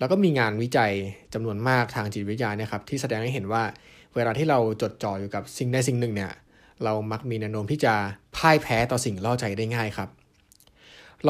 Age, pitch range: 20-39, 105-130 Hz